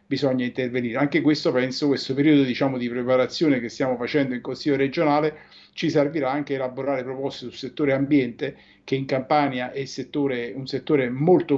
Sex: male